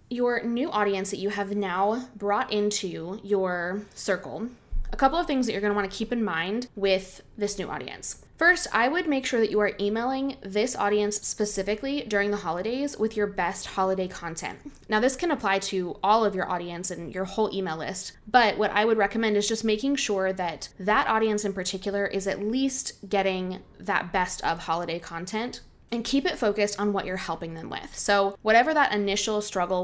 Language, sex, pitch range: English, female, 185-220 Hz